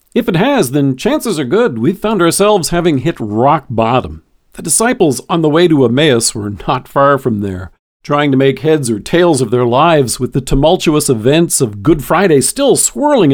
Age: 50-69